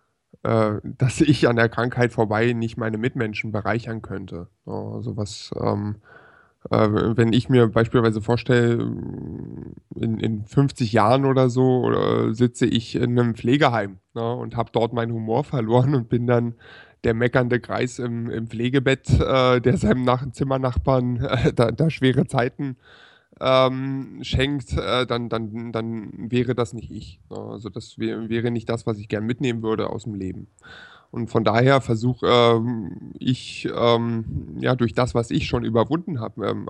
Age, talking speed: 20-39, 160 wpm